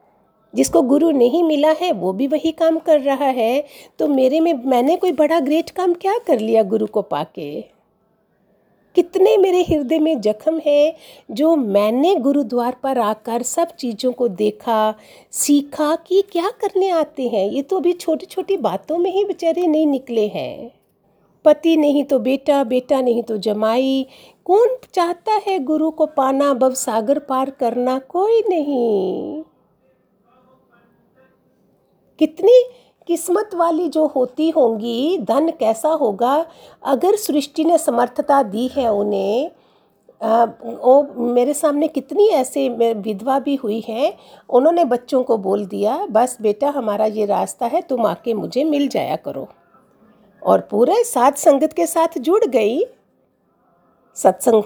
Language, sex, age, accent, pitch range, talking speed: Hindi, female, 50-69, native, 240-335 Hz, 140 wpm